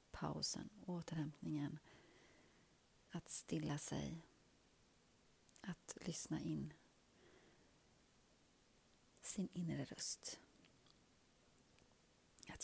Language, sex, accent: Swedish, female, native